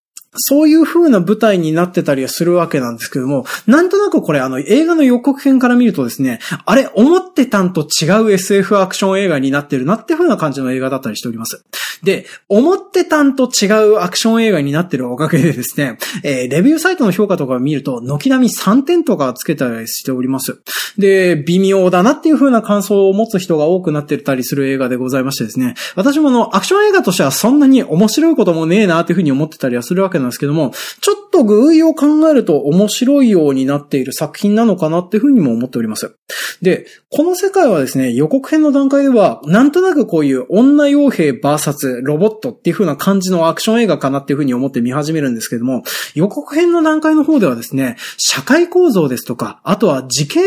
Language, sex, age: Japanese, male, 20-39